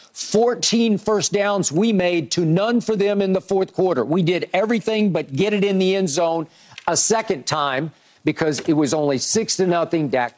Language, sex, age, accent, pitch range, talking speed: English, male, 50-69, American, 160-200 Hz, 195 wpm